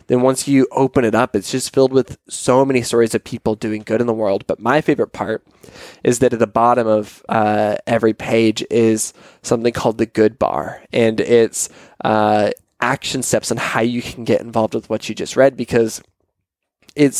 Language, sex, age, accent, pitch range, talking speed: English, male, 20-39, American, 110-130 Hz, 200 wpm